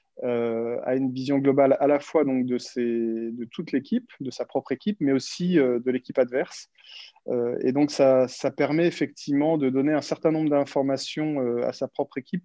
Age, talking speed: 30-49, 185 wpm